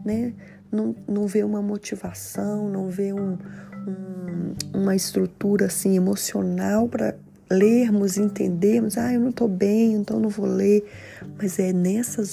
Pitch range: 185-230 Hz